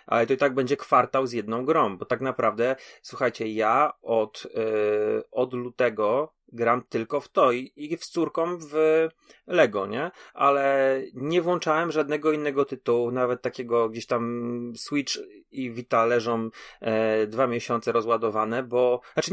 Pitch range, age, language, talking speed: 120-140 Hz, 30-49, Polish, 145 wpm